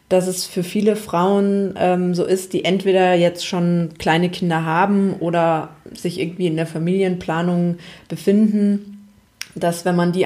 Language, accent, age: German, German, 20-39